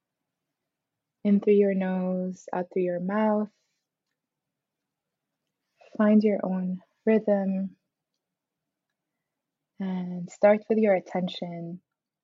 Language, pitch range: English, 180-215 Hz